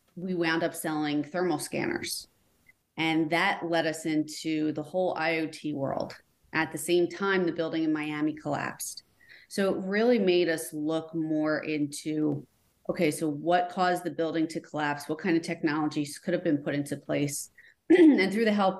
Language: English